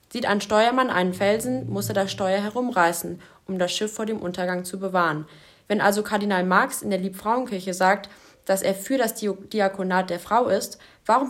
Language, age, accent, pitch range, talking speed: German, 20-39, German, 185-220 Hz, 185 wpm